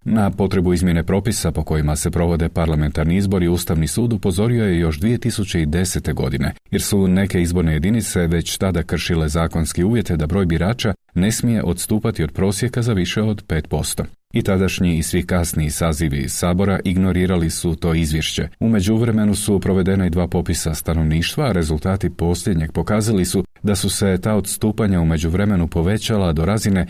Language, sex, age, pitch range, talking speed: Croatian, male, 40-59, 90-110 Hz, 165 wpm